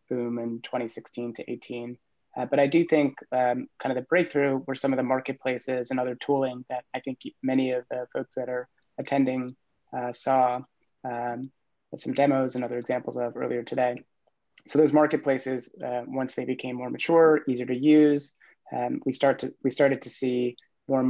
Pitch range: 125-140 Hz